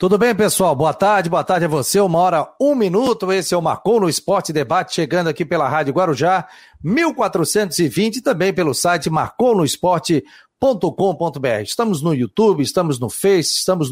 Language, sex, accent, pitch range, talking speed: Portuguese, male, Brazilian, 155-195 Hz, 165 wpm